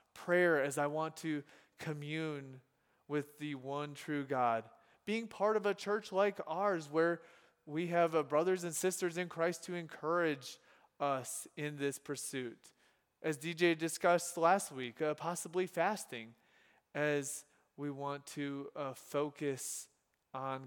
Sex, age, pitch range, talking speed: male, 20-39, 140-190 Hz, 140 wpm